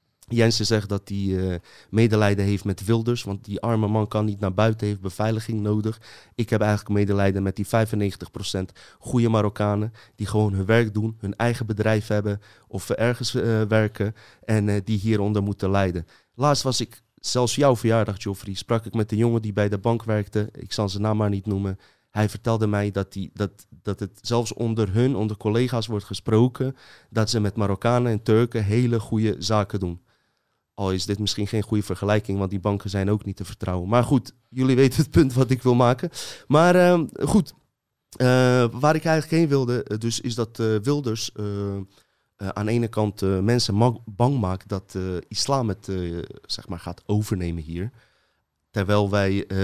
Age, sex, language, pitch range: 30-49, male, Dutch, 100-120 Hz